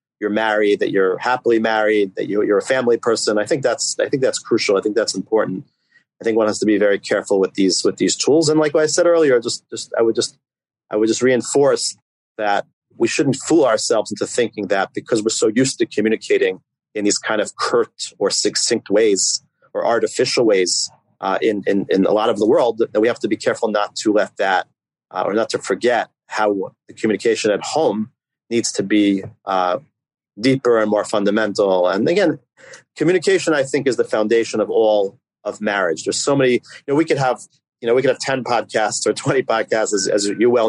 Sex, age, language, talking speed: male, 30-49, English, 210 wpm